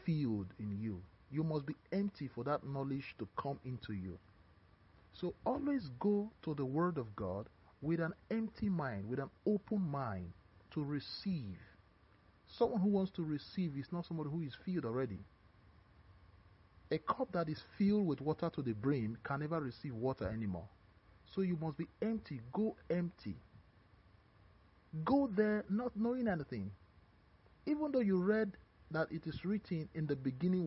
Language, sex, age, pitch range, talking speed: English, male, 40-59, 100-165 Hz, 160 wpm